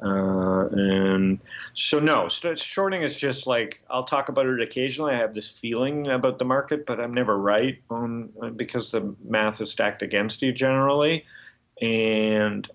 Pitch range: 100-130 Hz